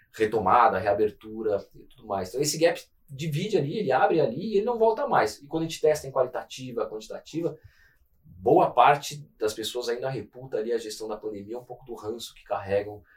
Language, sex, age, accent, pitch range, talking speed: Portuguese, male, 20-39, Brazilian, 115-170 Hz, 195 wpm